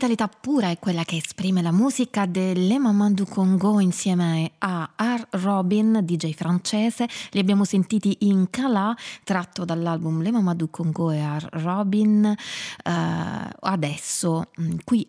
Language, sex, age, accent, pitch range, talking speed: Italian, female, 20-39, native, 170-210 Hz, 130 wpm